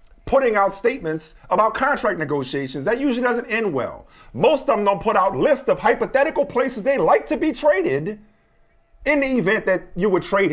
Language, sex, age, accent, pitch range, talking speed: English, male, 40-59, American, 170-235 Hz, 190 wpm